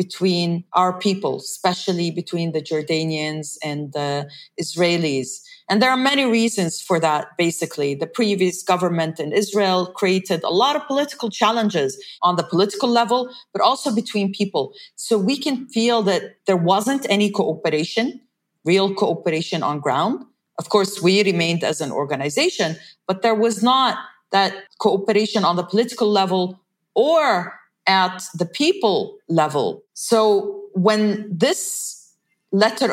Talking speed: 140 wpm